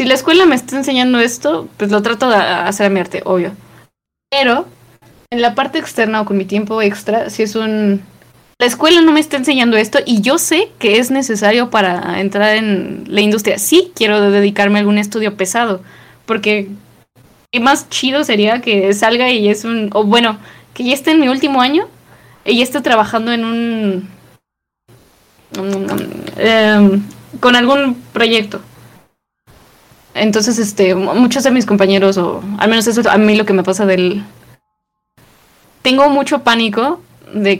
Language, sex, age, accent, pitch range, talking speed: Spanish, female, 10-29, Mexican, 205-245 Hz, 170 wpm